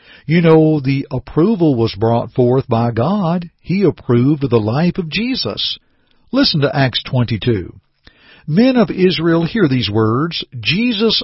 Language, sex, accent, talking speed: English, male, American, 140 wpm